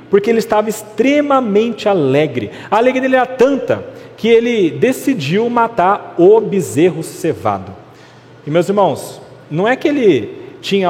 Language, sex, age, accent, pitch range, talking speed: Portuguese, male, 40-59, Brazilian, 140-210 Hz, 140 wpm